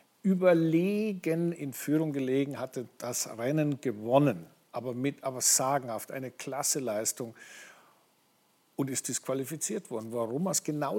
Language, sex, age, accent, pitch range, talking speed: German, male, 50-69, German, 135-185 Hz, 115 wpm